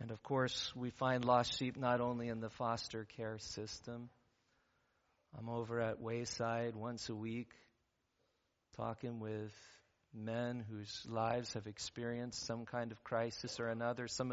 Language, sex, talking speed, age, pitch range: English, male, 145 wpm, 40-59, 115-130 Hz